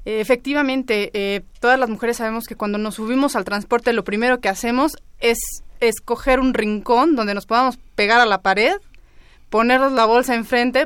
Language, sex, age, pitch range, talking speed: Spanish, female, 20-39, 225-265 Hz, 170 wpm